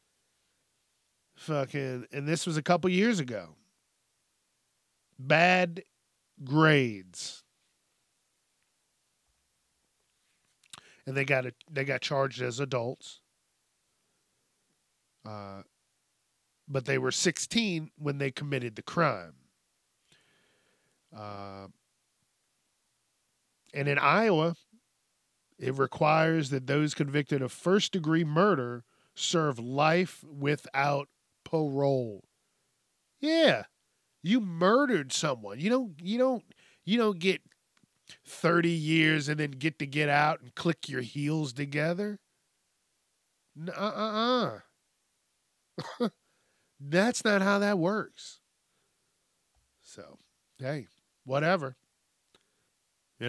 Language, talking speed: English, 90 wpm